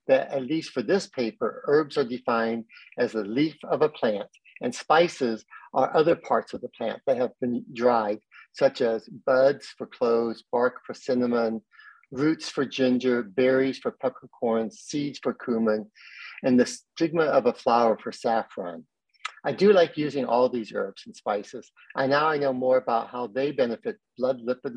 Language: English